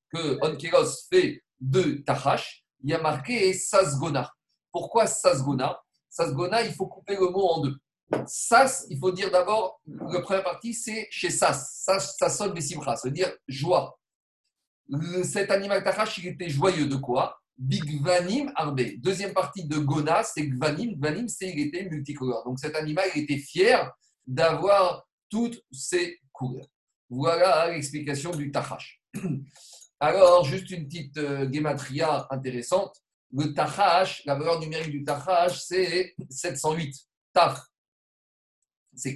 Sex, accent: male, French